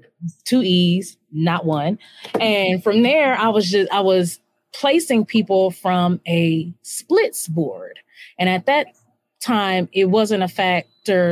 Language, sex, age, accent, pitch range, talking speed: English, female, 20-39, American, 170-210 Hz, 140 wpm